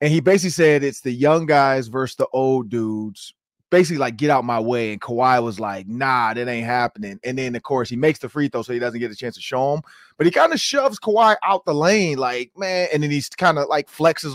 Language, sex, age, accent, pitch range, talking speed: English, male, 30-49, American, 130-185 Hz, 260 wpm